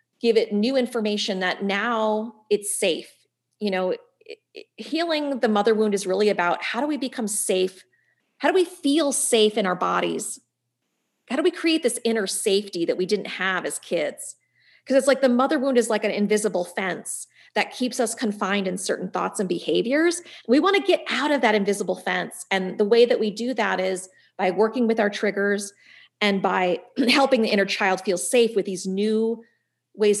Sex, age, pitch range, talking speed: female, 30-49, 190-245 Hz, 195 wpm